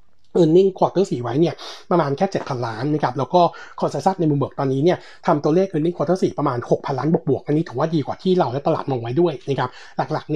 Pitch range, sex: 135-175 Hz, male